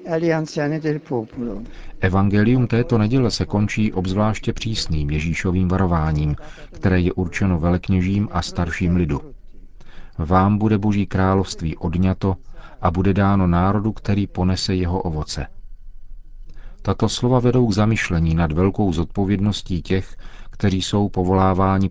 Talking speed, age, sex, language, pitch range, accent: 110 wpm, 40-59, male, Czech, 85-100 Hz, native